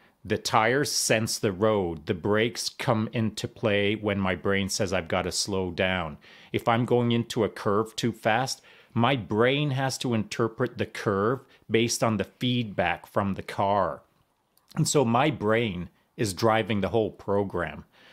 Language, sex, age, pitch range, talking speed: English, male, 40-59, 100-120 Hz, 165 wpm